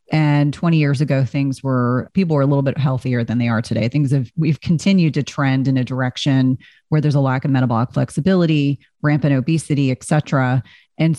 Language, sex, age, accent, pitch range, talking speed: English, female, 30-49, American, 130-150 Hz, 200 wpm